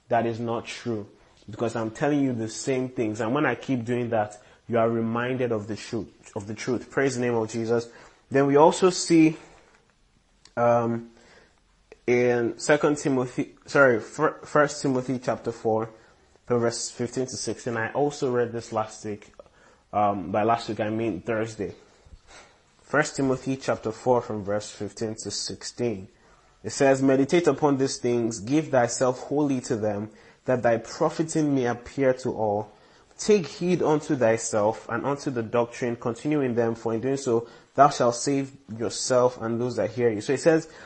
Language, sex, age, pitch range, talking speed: English, male, 20-39, 115-145 Hz, 170 wpm